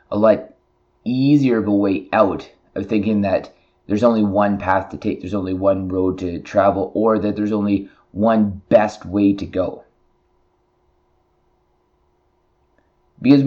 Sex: male